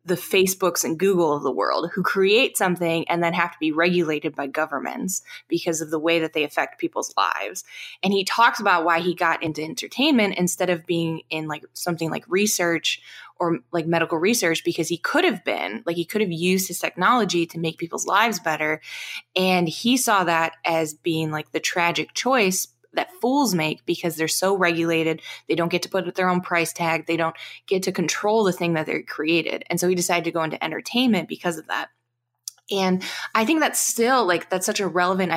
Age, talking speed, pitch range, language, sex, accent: 20-39, 205 wpm, 165-190 Hz, English, female, American